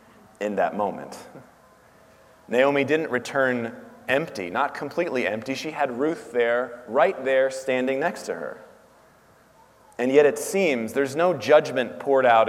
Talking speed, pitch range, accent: 140 wpm, 115-145 Hz, American